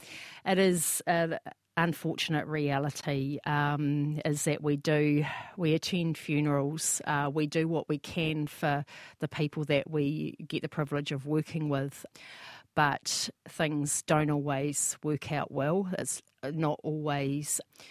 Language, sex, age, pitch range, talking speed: English, female, 40-59, 140-160 Hz, 135 wpm